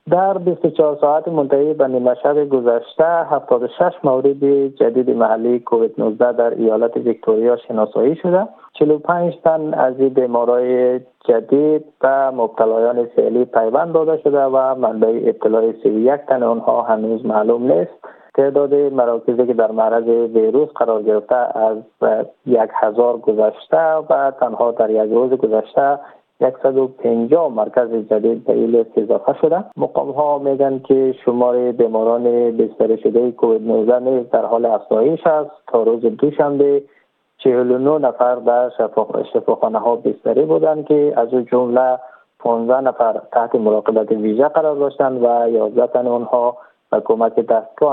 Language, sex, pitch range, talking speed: Persian, male, 115-145 Hz, 140 wpm